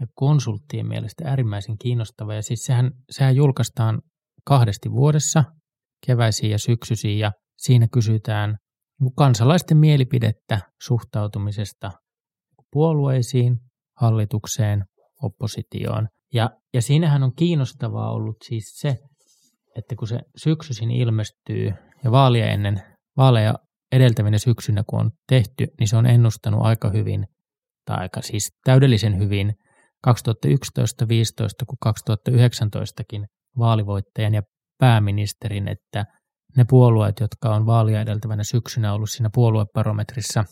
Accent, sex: native, male